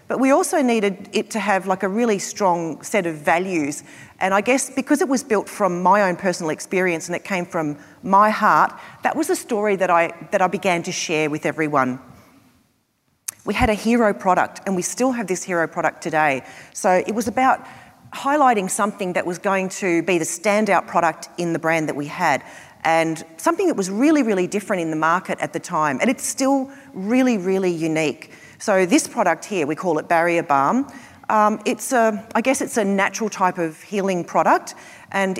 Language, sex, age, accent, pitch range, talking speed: English, female, 40-59, Australian, 170-220 Hz, 200 wpm